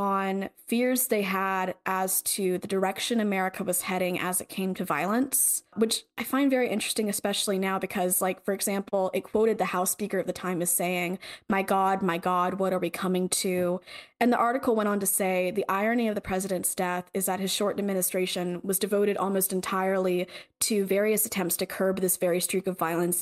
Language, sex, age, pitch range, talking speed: English, female, 20-39, 185-220 Hz, 200 wpm